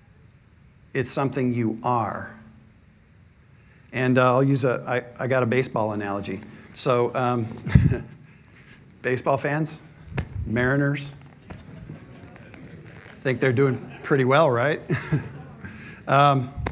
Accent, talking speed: American, 110 wpm